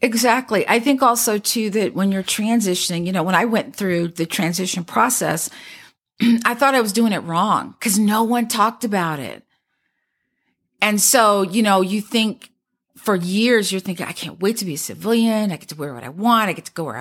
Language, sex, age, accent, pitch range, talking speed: English, female, 50-69, American, 175-230 Hz, 210 wpm